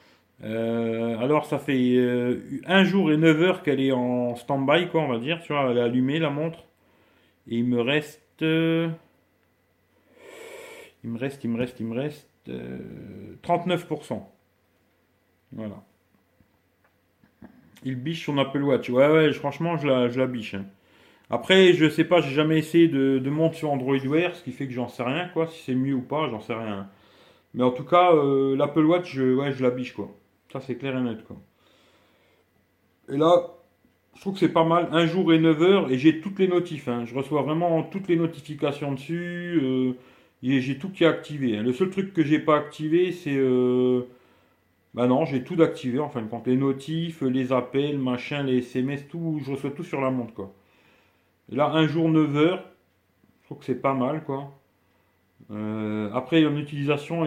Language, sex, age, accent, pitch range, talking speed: English, male, 40-59, French, 120-160 Hz, 195 wpm